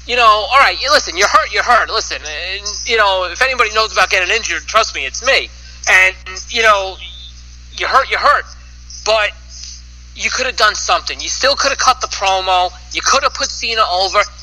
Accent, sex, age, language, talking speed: American, male, 30-49, English, 200 wpm